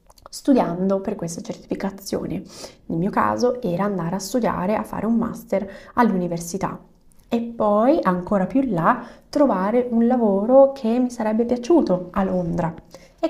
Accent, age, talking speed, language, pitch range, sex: native, 20-39, 145 wpm, Italian, 185-240 Hz, female